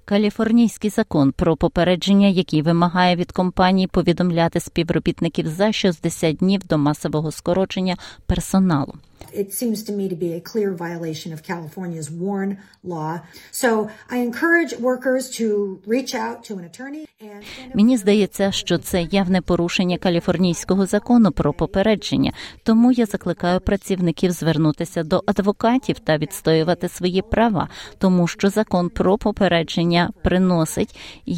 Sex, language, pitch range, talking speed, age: female, Ukrainian, 170-210 Hz, 85 wpm, 40-59